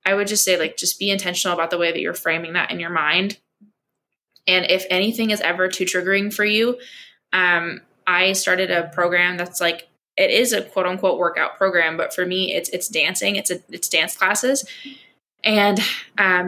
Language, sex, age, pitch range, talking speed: English, female, 20-39, 175-200 Hz, 195 wpm